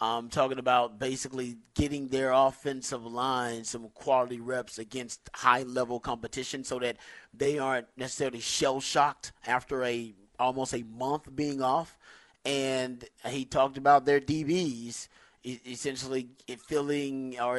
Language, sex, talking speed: English, male, 125 wpm